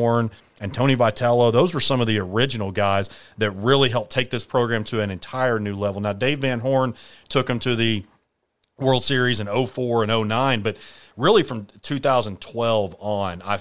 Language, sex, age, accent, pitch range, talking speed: English, male, 30-49, American, 105-125 Hz, 180 wpm